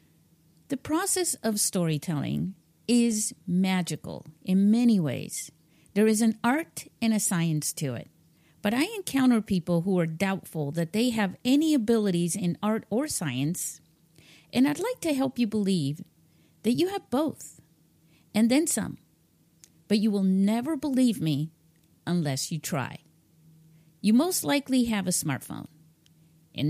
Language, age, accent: English, 50-69, American